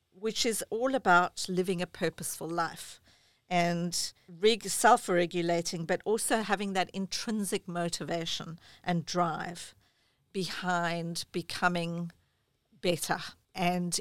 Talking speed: 95 wpm